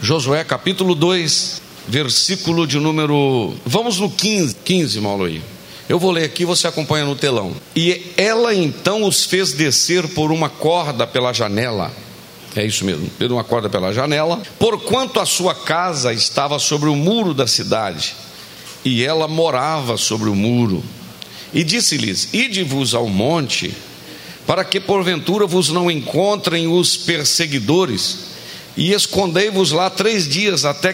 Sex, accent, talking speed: male, Brazilian, 145 wpm